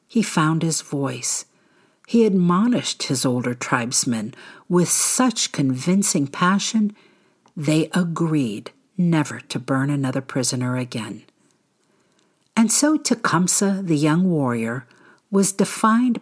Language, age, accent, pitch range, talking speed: English, 60-79, American, 135-185 Hz, 105 wpm